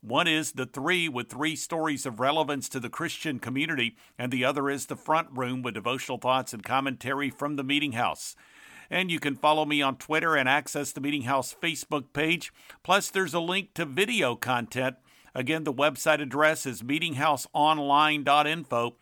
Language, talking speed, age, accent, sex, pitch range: English, 175 wpm, 50-69, American, male, 130-155 Hz